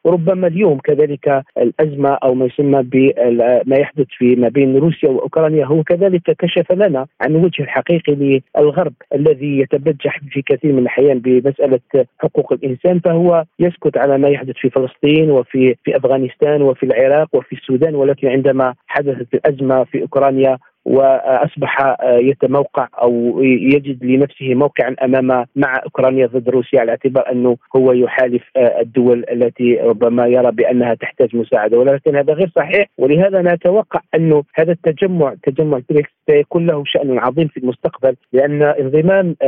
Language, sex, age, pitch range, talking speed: Arabic, male, 40-59, 130-155 Hz, 140 wpm